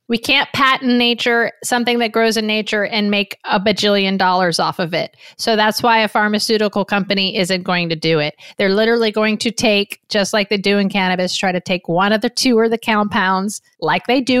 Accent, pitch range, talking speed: American, 195-245 Hz, 215 wpm